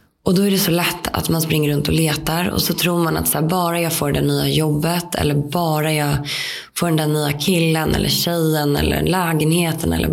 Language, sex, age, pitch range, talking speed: Swedish, female, 20-39, 150-180 Hz, 225 wpm